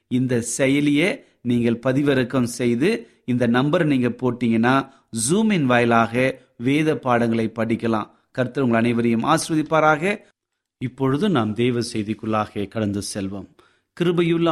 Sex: male